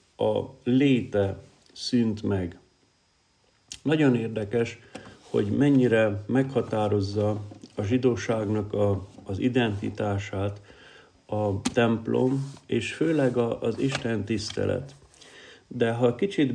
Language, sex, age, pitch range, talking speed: Hungarian, male, 50-69, 105-125 Hz, 85 wpm